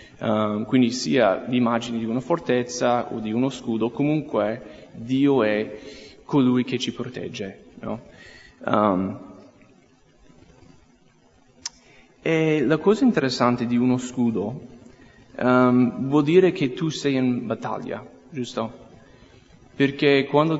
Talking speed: 100 wpm